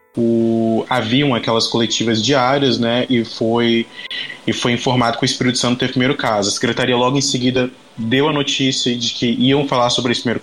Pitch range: 115-135 Hz